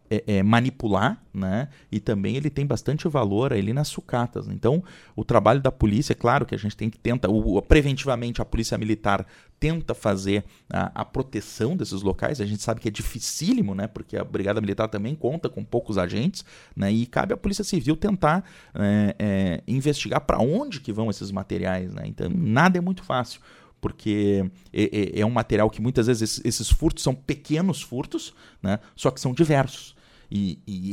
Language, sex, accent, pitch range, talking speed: Portuguese, male, Brazilian, 105-135 Hz, 180 wpm